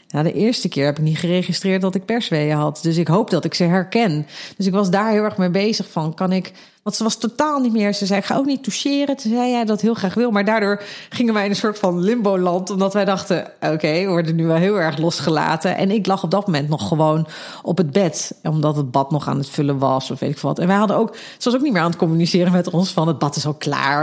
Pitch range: 155-205 Hz